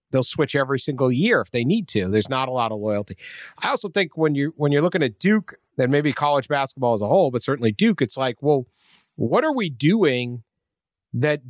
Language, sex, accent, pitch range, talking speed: English, male, American, 120-175 Hz, 225 wpm